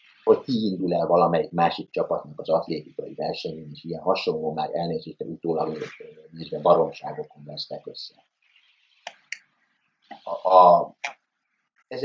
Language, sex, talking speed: Hungarian, male, 105 wpm